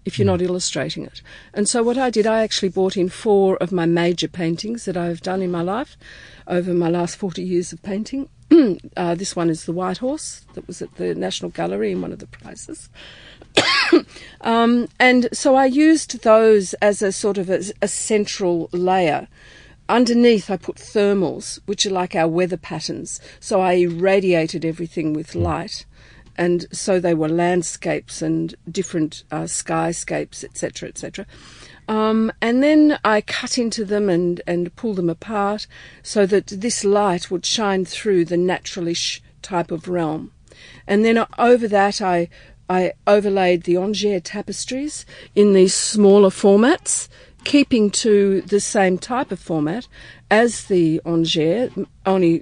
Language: English